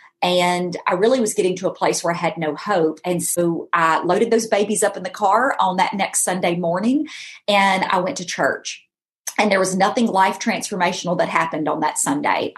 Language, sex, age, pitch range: English, female, 40-59, 170-210 Hz